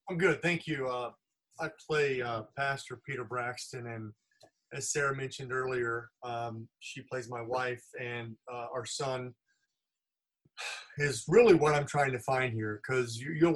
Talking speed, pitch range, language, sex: 155 wpm, 120-145 Hz, English, male